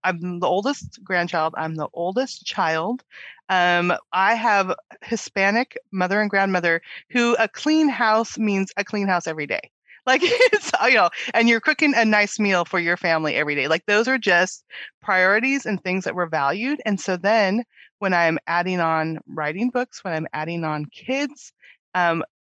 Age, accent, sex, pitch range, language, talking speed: 30-49, American, female, 175-220 Hz, English, 175 wpm